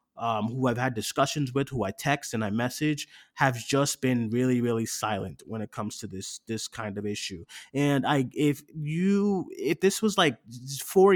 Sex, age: male, 20-39